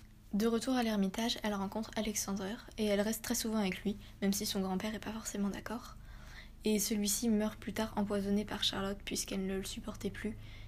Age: 20-39